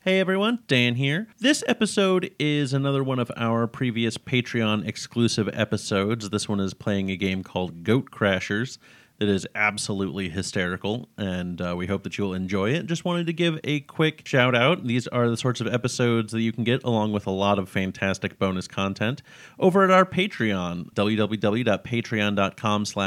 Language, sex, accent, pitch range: English, male, American, 100-130 Hz